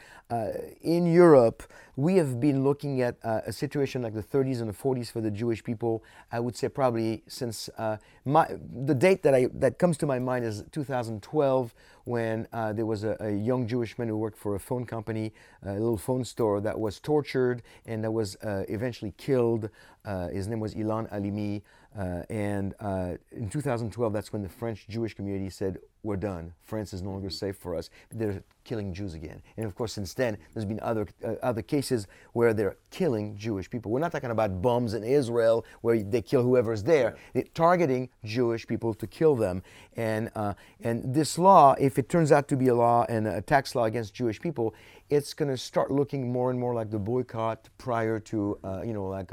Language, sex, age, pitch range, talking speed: English, male, 30-49, 105-125 Hz, 205 wpm